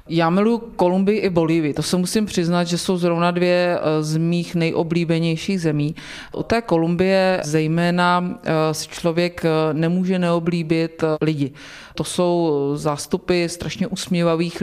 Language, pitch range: Czech, 155-170 Hz